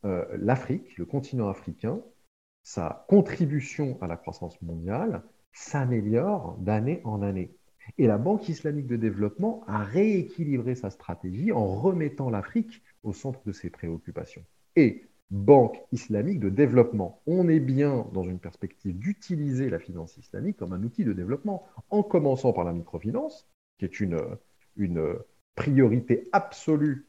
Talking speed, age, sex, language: 140 wpm, 50-69, male, French